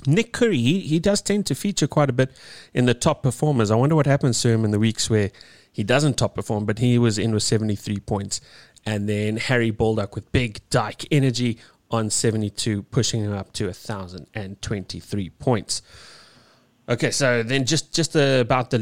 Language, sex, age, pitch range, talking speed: English, male, 30-49, 105-125 Hz, 190 wpm